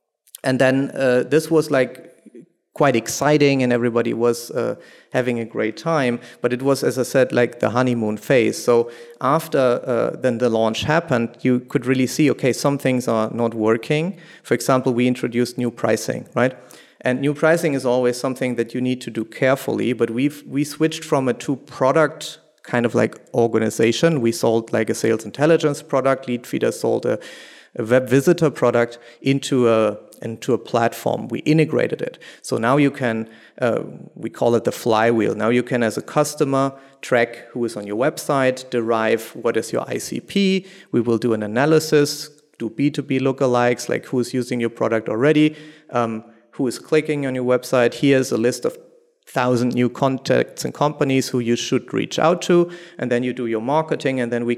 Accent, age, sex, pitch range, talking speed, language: German, 30-49, male, 120-145 Hz, 185 wpm, English